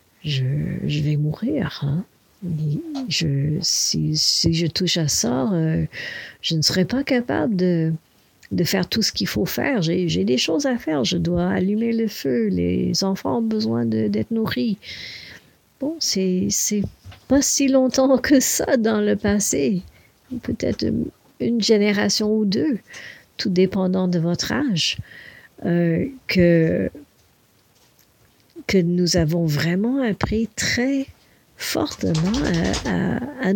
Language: English